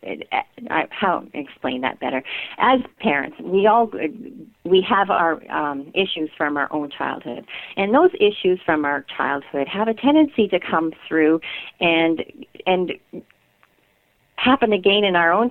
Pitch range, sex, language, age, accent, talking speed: 160-230 Hz, female, English, 50-69, American, 140 wpm